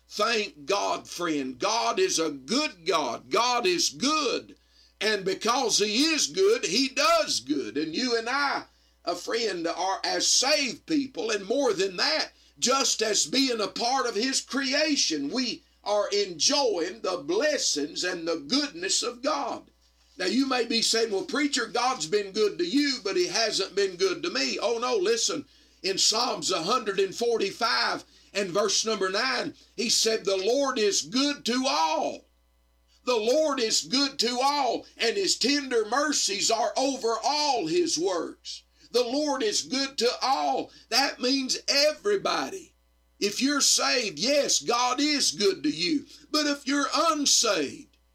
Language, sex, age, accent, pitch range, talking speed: English, male, 50-69, American, 220-310 Hz, 155 wpm